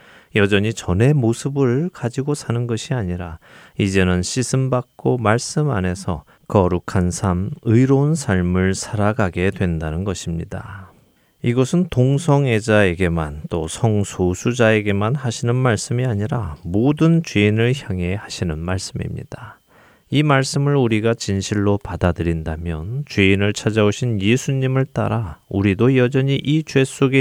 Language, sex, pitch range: Korean, male, 90-125 Hz